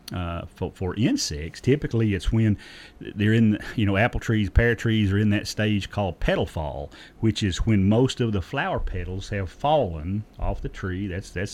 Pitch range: 95-115 Hz